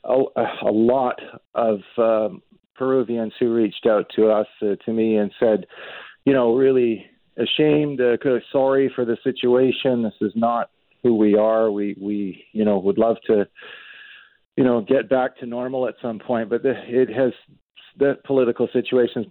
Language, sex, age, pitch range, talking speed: English, male, 40-59, 105-120 Hz, 165 wpm